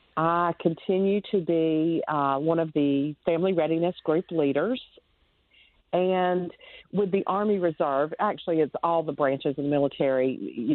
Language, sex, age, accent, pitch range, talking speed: English, female, 50-69, American, 145-180 Hz, 145 wpm